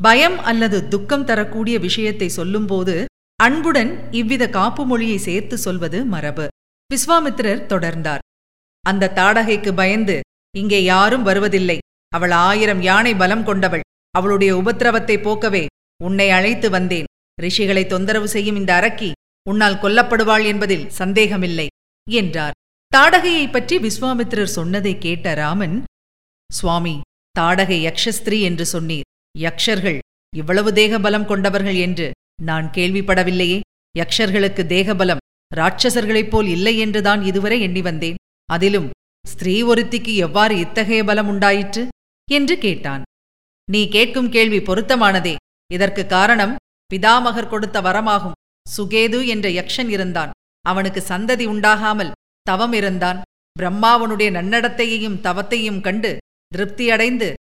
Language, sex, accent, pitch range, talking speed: Tamil, female, native, 180-220 Hz, 105 wpm